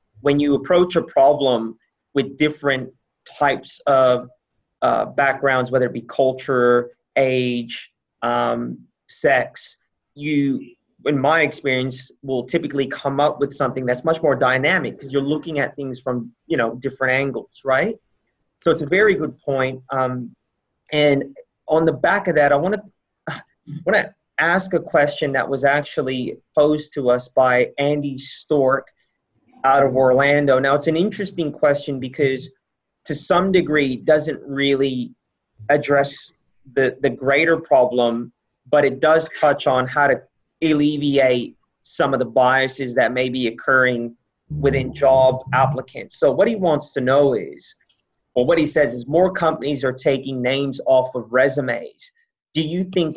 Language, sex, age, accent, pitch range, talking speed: English, male, 30-49, American, 130-150 Hz, 150 wpm